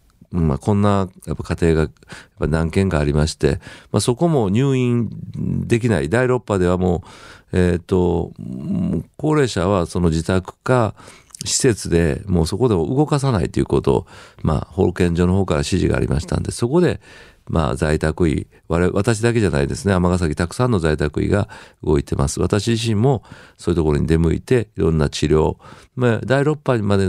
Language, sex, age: Japanese, male, 50-69